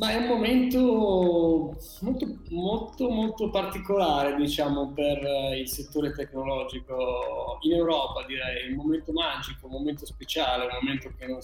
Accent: native